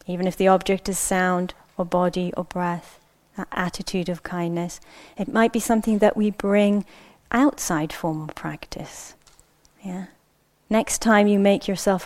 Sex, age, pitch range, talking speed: female, 30-49, 165-200 Hz, 145 wpm